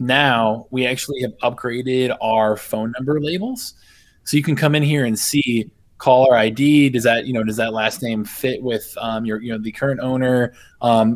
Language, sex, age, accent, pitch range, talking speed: English, male, 20-39, American, 110-130 Hz, 205 wpm